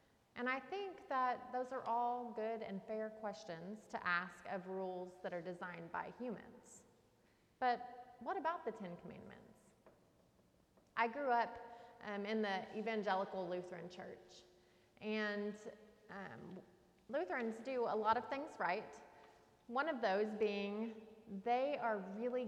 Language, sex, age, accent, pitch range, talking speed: English, female, 30-49, American, 195-245 Hz, 135 wpm